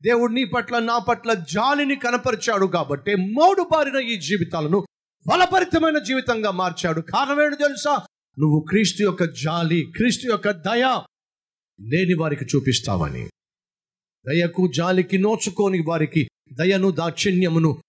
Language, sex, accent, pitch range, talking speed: Telugu, male, native, 155-245 Hz, 115 wpm